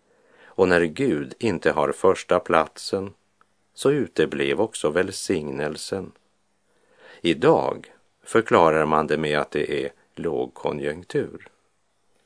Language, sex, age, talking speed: Swedish, male, 50-69, 100 wpm